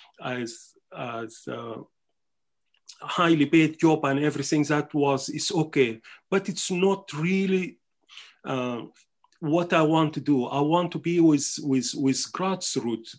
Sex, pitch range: male, 135-165 Hz